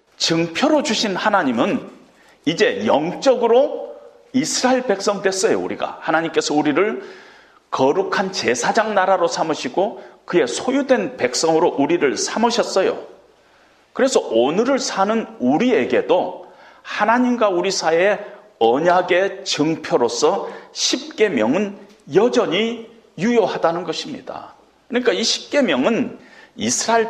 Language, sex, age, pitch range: Korean, male, 40-59, 190-295 Hz